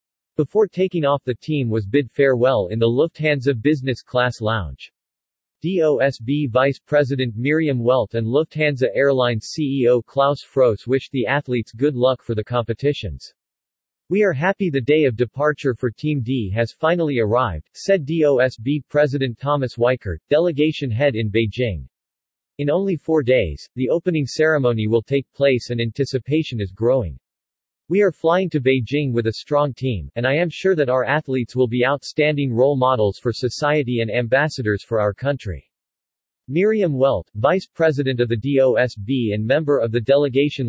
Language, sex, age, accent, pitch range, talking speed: English, male, 40-59, American, 115-150 Hz, 160 wpm